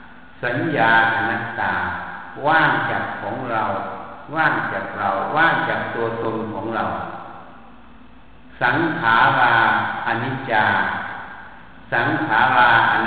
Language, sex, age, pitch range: Thai, male, 60-79, 115-150 Hz